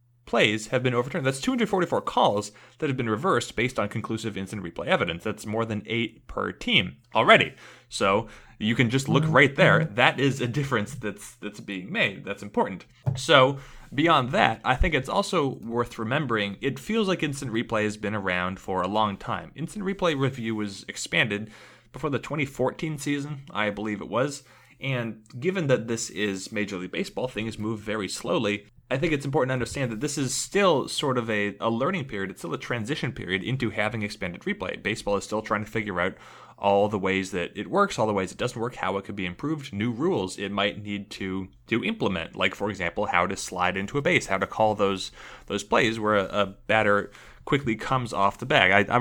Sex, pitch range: male, 105-135 Hz